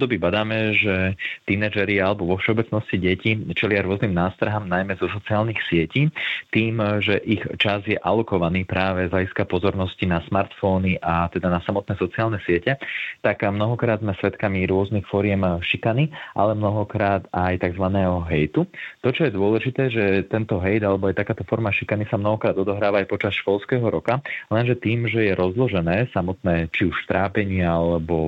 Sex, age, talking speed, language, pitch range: male, 30-49, 155 wpm, Slovak, 90-110 Hz